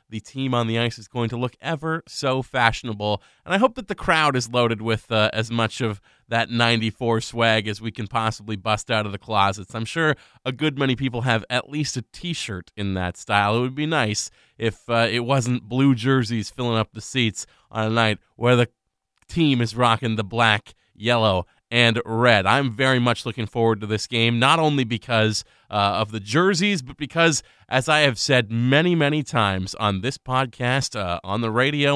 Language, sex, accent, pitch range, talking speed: English, male, American, 115-145 Hz, 205 wpm